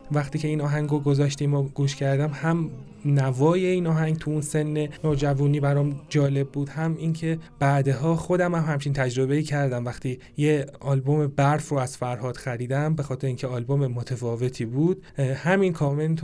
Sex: male